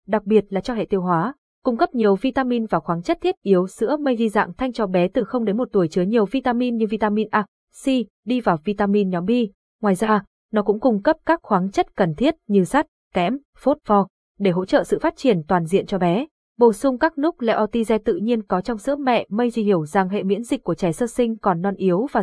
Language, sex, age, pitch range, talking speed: Vietnamese, female, 20-39, 190-245 Hz, 245 wpm